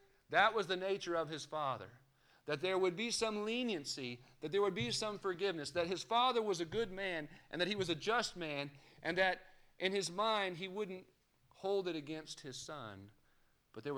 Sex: male